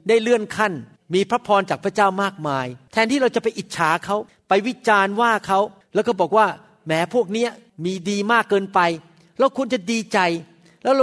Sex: male